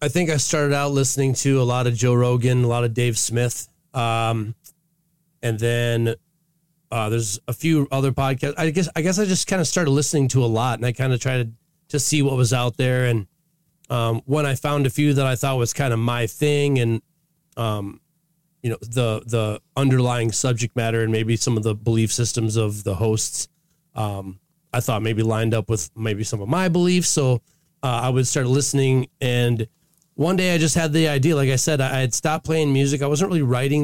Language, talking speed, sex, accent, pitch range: English, 220 wpm, male, American, 120-155 Hz